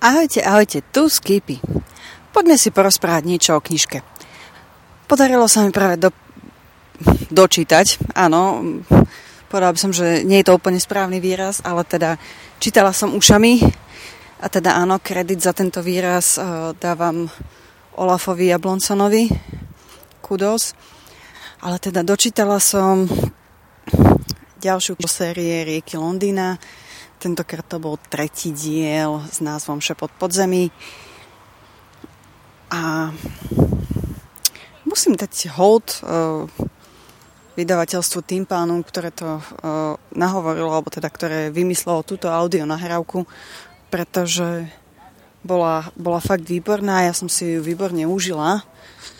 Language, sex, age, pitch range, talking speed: English, female, 30-49, 165-195 Hz, 110 wpm